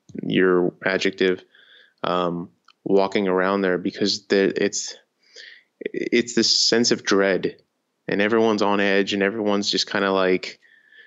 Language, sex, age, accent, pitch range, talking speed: English, male, 20-39, American, 95-110 Hz, 125 wpm